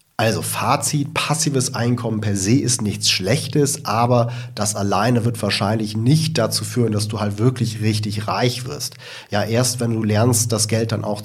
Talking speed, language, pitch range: 175 wpm, German, 105-120 Hz